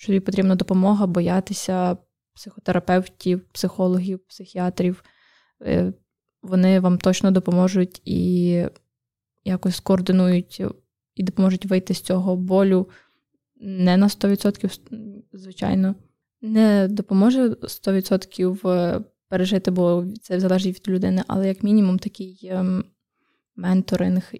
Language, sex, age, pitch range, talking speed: Ukrainian, female, 20-39, 185-205 Hz, 95 wpm